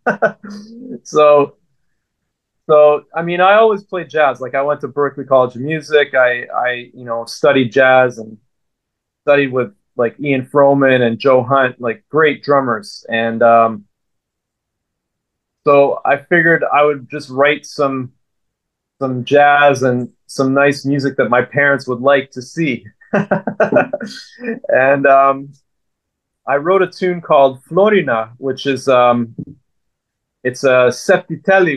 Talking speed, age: 135 wpm, 30-49